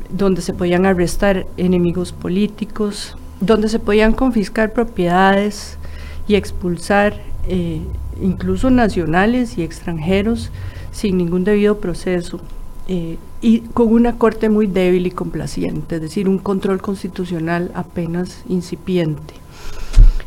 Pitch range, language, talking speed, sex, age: 155-210 Hz, Spanish, 115 wpm, female, 40-59